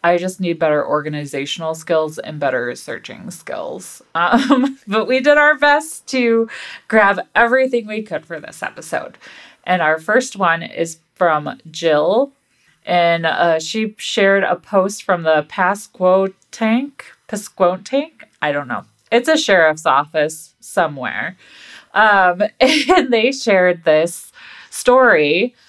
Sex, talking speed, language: female, 130 wpm, English